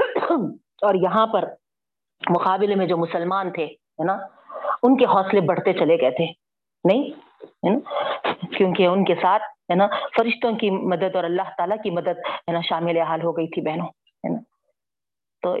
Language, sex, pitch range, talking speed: Urdu, female, 180-240 Hz, 150 wpm